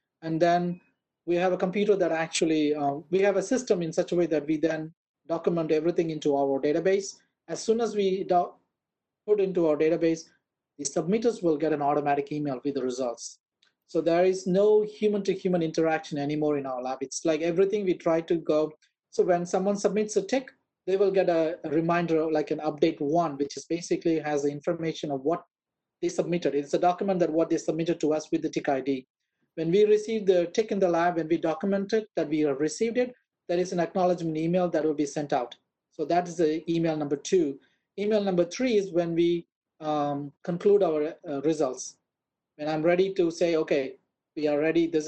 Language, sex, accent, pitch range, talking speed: English, male, Indian, 155-190 Hz, 210 wpm